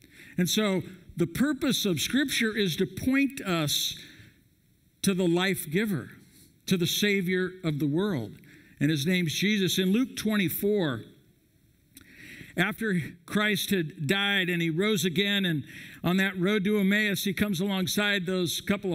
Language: English